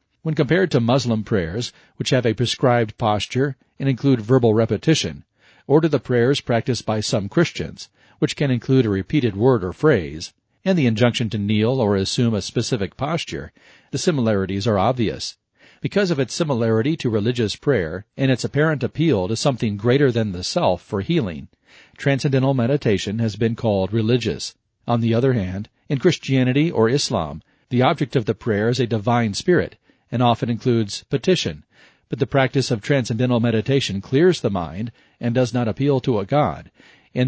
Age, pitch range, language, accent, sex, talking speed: 40-59, 110-135 Hz, English, American, male, 170 wpm